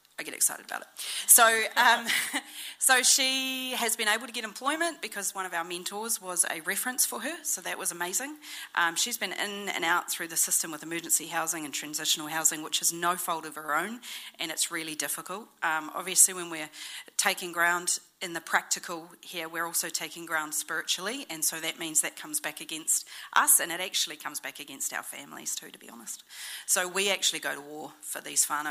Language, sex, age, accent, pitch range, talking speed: English, female, 40-59, Australian, 155-205 Hz, 210 wpm